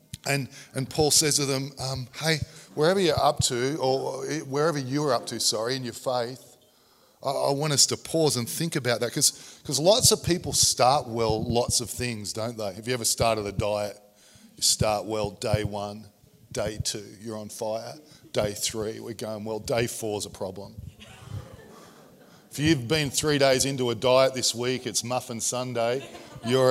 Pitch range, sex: 115-140 Hz, male